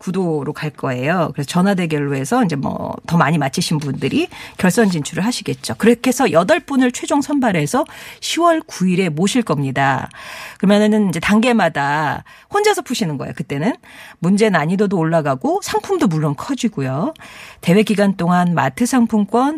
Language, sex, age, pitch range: Korean, female, 40-59, 165-245 Hz